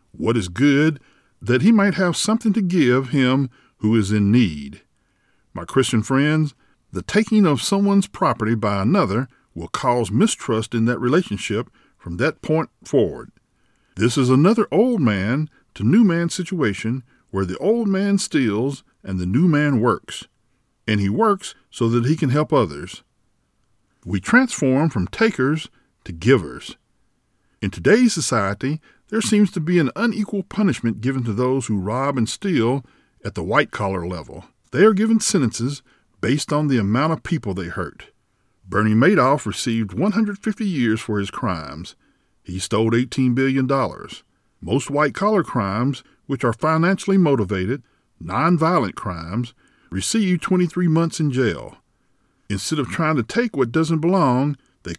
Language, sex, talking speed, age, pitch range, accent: English, male, 150 wpm, 50-69, 110-170 Hz, American